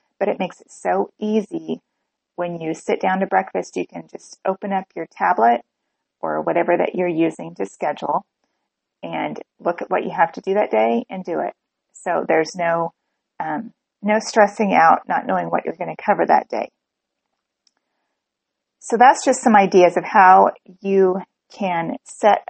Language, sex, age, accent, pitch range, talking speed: English, female, 30-49, American, 170-215 Hz, 175 wpm